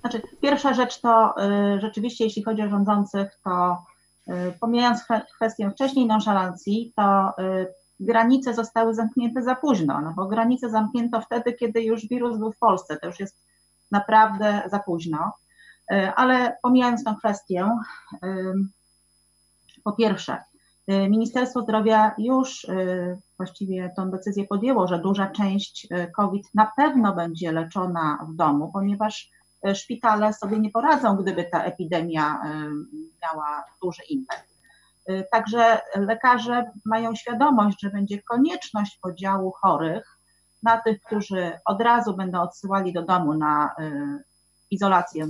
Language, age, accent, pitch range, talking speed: Polish, 30-49, native, 185-230 Hz, 120 wpm